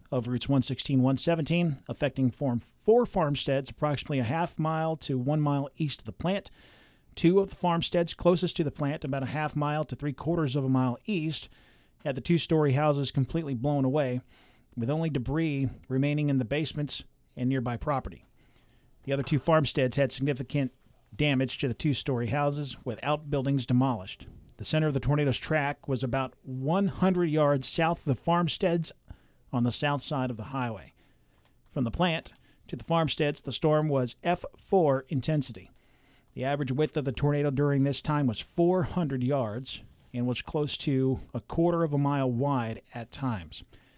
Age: 40-59